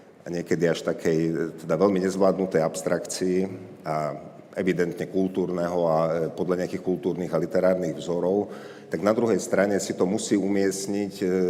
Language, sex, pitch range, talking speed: Slovak, male, 90-95 Hz, 135 wpm